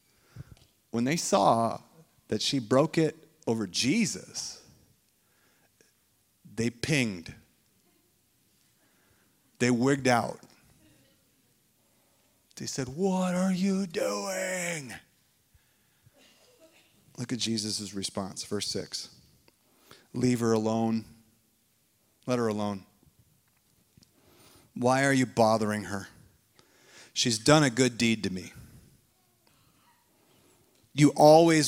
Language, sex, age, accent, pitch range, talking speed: English, male, 40-59, American, 110-140 Hz, 85 wpm